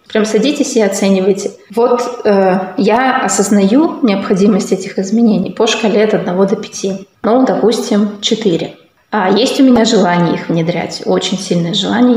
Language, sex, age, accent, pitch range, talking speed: Russian, female, 20-39, native, 190-230 Hz, 150 wpm